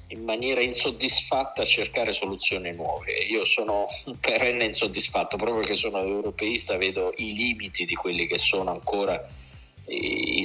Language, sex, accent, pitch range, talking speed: Italian, male, native, 95-115 Hz, 140 wpm